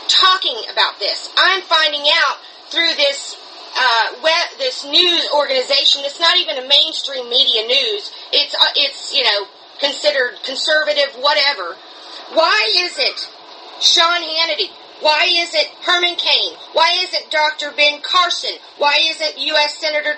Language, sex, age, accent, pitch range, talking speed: English, female, 40-59, American, 285-350 Hz, 145 wpm